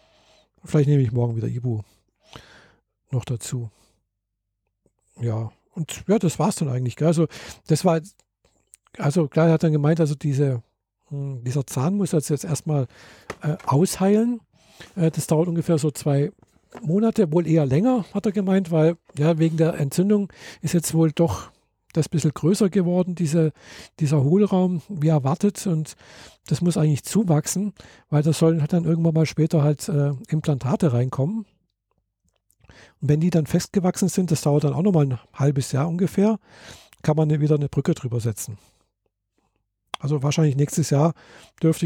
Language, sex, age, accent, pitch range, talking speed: German, male, 50-69, German, 125-165 Hz, 155 wpm